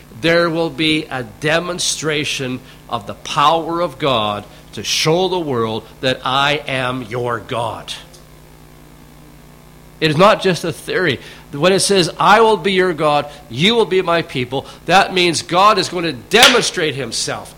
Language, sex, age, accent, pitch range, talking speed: English, male, 50-69, American, 125-175 Hz, 155 wpm